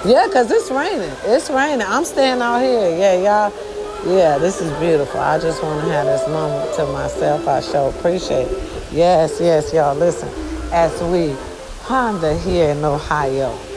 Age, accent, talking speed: 40-59, American, 170 wpm